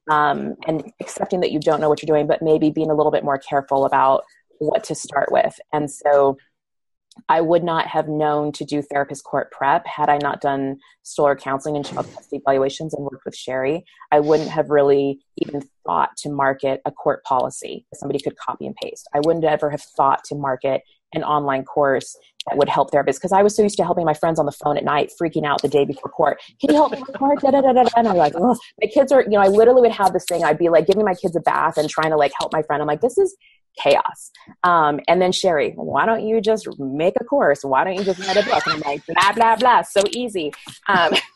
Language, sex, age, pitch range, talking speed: English, female, 20-39, 140-195 Hz, 240 wpm